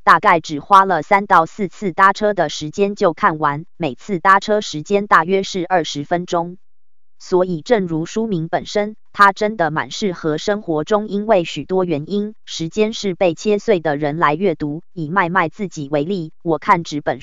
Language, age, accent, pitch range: Chinese, 20-39, American, 155-200 Hz